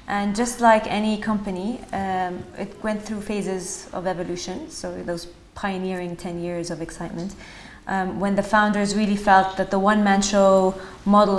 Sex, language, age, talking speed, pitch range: female, English, 20-39, 160 wpm, 175-205 Hz